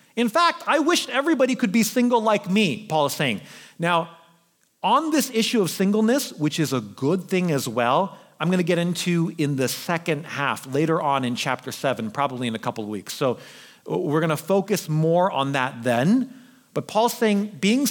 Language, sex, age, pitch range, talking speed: English, male, 40-59, 155-245 Hz, 200 wpm